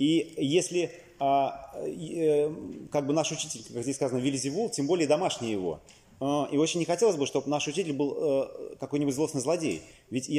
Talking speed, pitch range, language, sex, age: 155 wpm, 140-165 Hz, Russian, male, 30-49